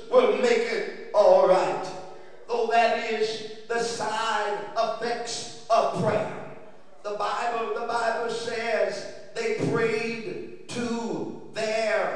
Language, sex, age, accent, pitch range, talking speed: English, male, 50-69, American, 215-240 Hz, 110 wpm